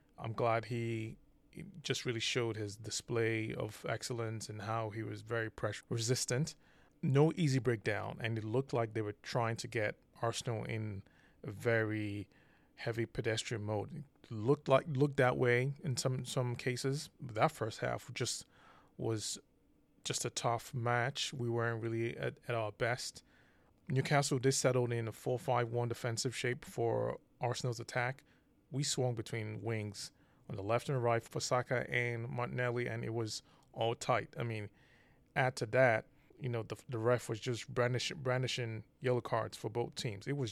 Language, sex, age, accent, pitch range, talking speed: English, male, 20-39, American, 115-130 Hz, 165 wpm